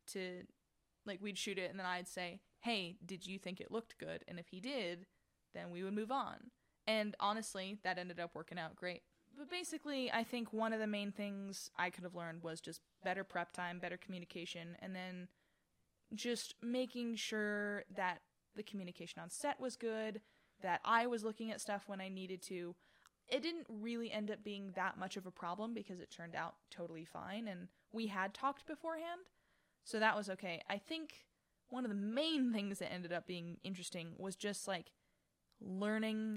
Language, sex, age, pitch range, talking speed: English, female, 10-29, 180-225 Hz, 195 wpm